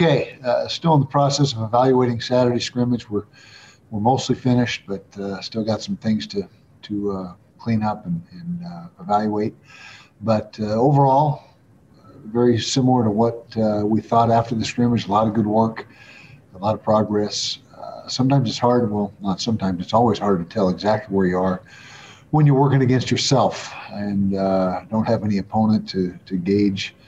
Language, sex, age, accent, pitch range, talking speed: English, male, 50-69, American, 100-120 Hz, 180 wpm